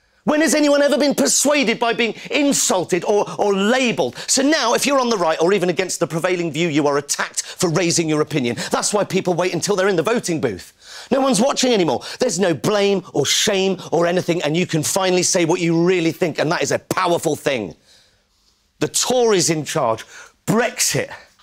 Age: 40-59